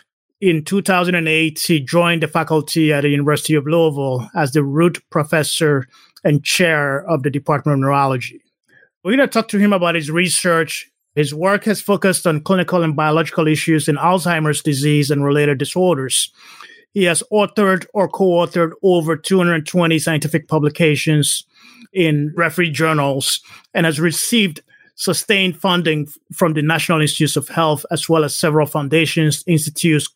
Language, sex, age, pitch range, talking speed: English, male, 30-49, 150-175 Hz, 150 wpm